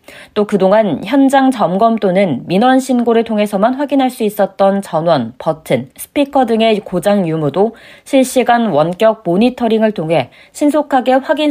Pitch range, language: 190-255 Hz, Korean